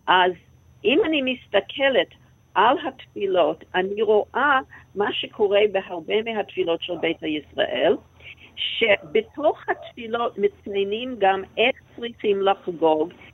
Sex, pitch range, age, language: female, 190-295 Hz, 60-79, Hebrew